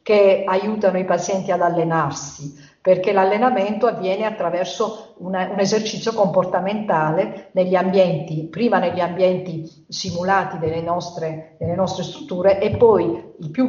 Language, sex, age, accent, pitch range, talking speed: Italian, female, 50-69, native, 185-245 Hz, 125 wpm